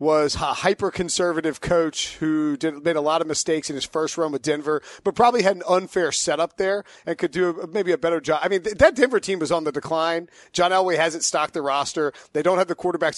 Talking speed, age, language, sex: 240 wpm, 40-59, English, male